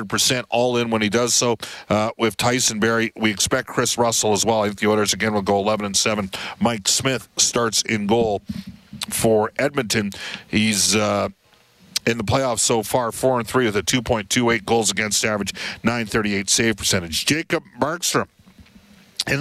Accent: American